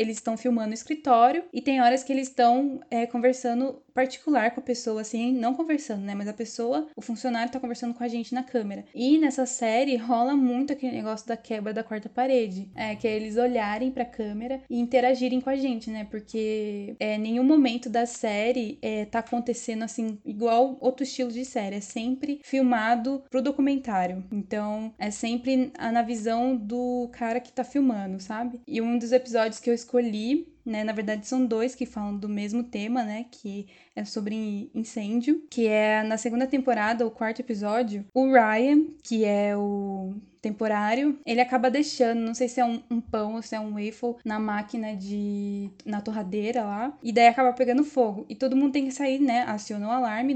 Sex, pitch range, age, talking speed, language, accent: female, 220-255 Hz, 10-29, 195 wpm, Portuguese, Brazilian